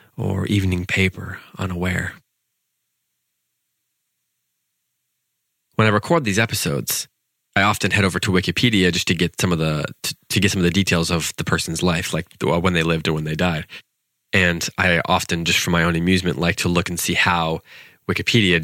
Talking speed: 175 wpm